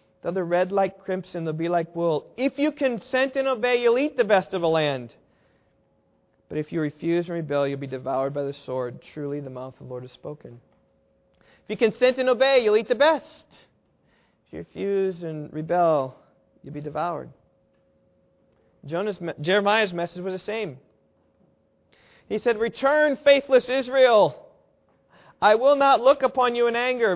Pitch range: 155-230 Hz